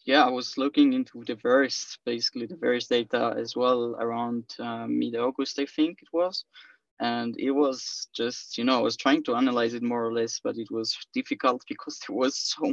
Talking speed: 205 wpm